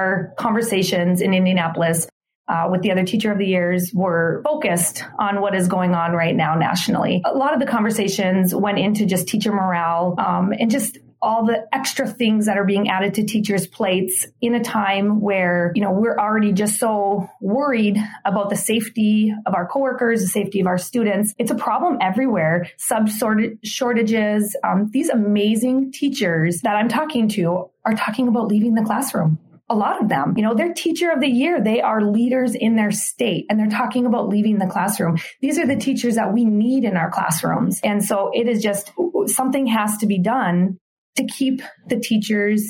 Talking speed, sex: 190 wpm, female